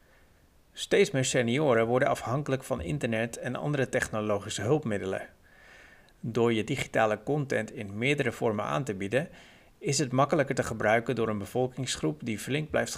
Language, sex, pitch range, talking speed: Dutch, male, 105-140 Hz, 150 wpm